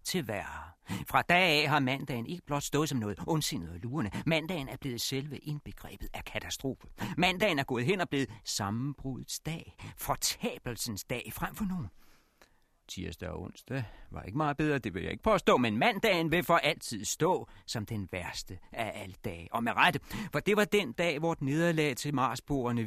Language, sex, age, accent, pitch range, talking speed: Danish, male, 40-59, native, 105-170 Hz, 185 wpm